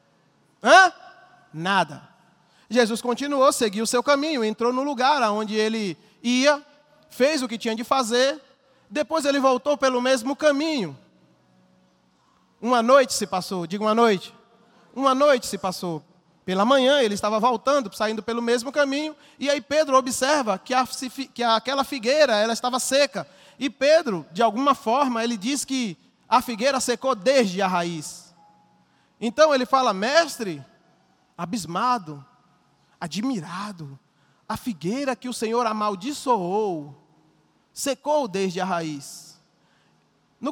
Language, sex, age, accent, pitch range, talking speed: Portuguese, male, 20-39, Brazilian, 185-270 Hz, 130 wpm